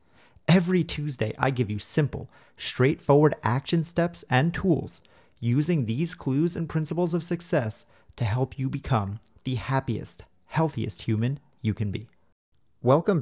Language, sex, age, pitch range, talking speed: English, male, 30-49, 110-135 Hz, 135 wpm